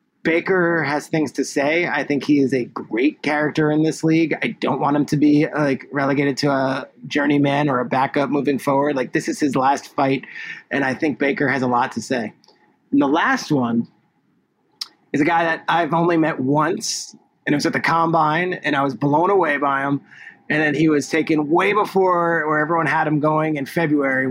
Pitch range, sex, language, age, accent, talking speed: 145-175 Hz, male, English, 30-49, American, 210 wpm